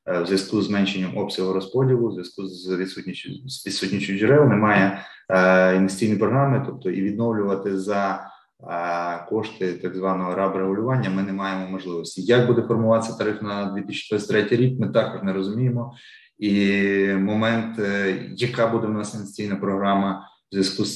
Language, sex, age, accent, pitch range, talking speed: Ukrainian, male, 20-39, native, 95-110 Hz, 145 wpm